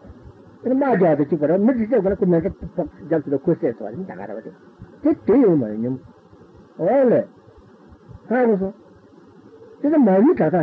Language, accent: Italian, Indian